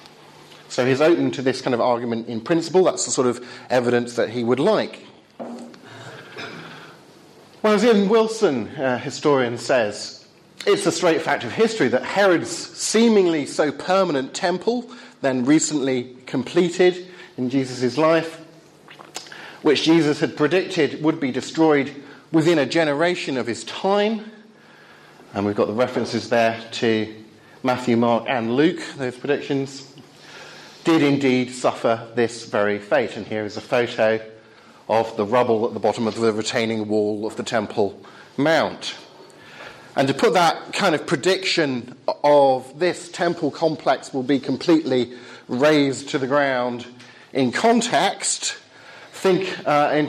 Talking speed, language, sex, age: 140 wpm, English, male, 40-59